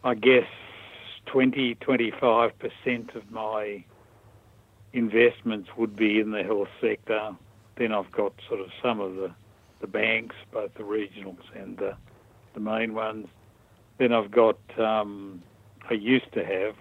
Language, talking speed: English, 135 wpm